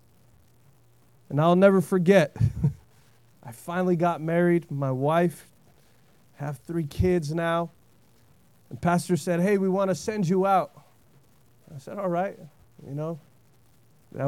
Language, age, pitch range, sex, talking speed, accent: English, 30-49, 140-205 Hz, male, 135 wpm, American